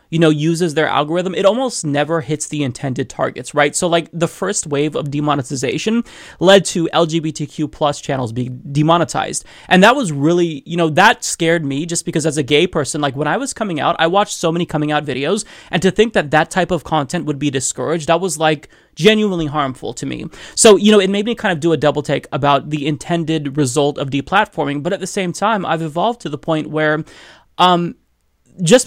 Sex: male